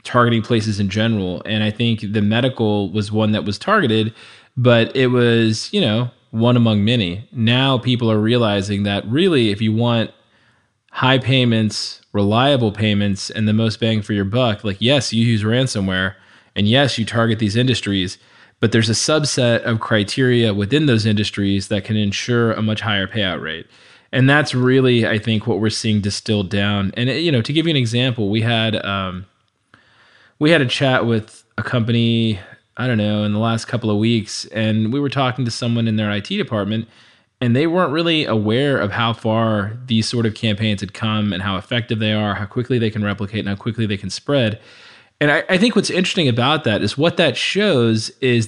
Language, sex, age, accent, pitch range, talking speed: English, male, 20-39, American, 105-120 Hz, 200 wpm